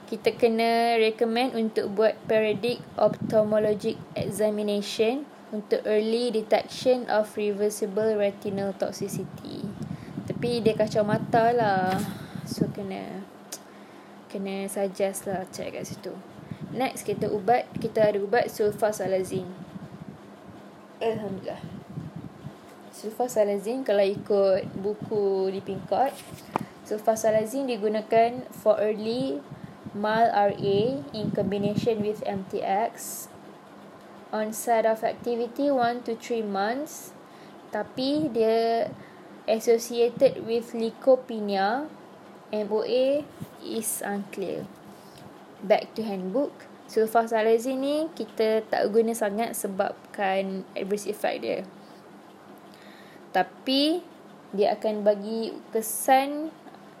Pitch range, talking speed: 200-230 Hz, 90 wpm